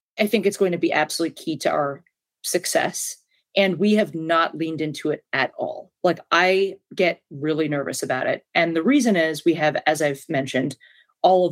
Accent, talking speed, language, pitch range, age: American, 200 wpm, English, 155-210 Hz, 40-59